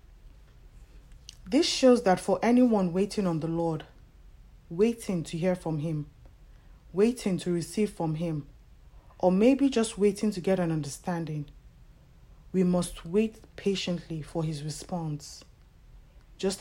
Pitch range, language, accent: 155-195 Hz, English, Nigerian